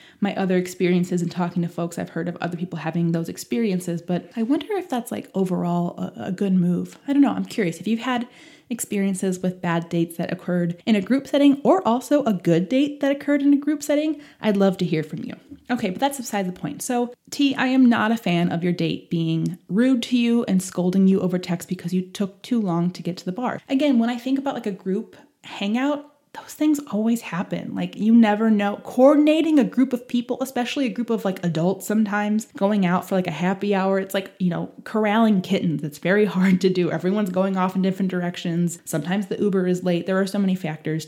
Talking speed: 230 wpm